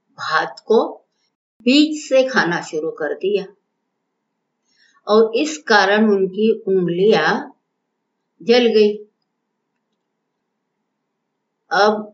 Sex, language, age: female, Hindi, 50-69